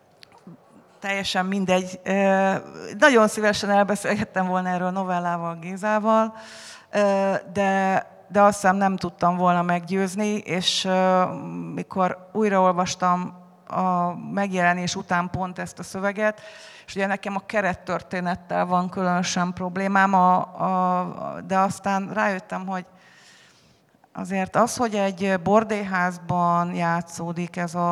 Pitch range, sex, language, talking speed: 175-195 Hz, female, Hungarian, 100 wpm